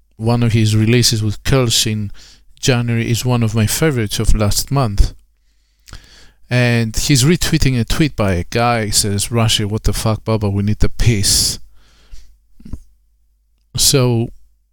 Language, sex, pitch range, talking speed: English, male, 100-130 Hz, 145 wpm